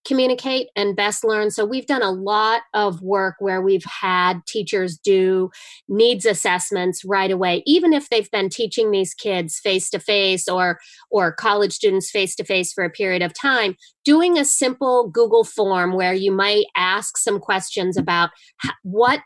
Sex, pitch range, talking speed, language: female, 185-230 Hz, 160 wpm, English